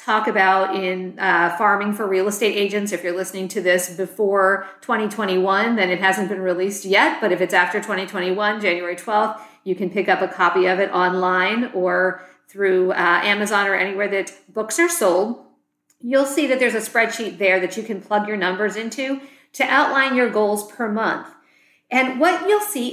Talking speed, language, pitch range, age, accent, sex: 190 wpm, English, 190-245 Hz, 50-69, American, female